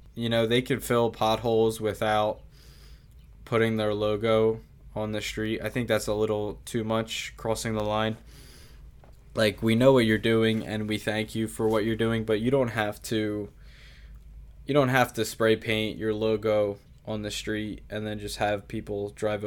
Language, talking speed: English, 180 wpm